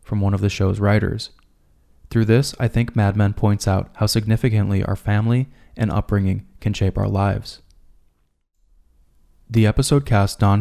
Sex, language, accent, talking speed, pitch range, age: male, English, American, 160 wpm, 95-110 Hz, 20-39